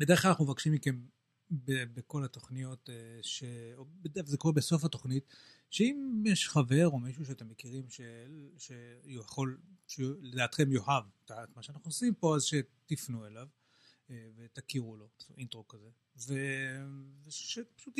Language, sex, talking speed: Hebrew, male, 125 wpm